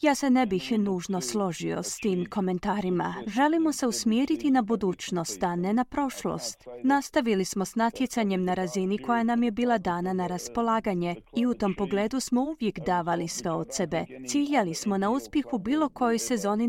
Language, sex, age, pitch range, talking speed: Croatian, female, 30-49, 190-250 Hz, 175 wpm